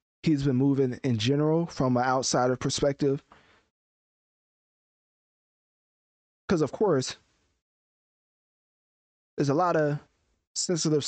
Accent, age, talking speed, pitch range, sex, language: American, 20-39, 90 wpm, 115-145 Hz, male, English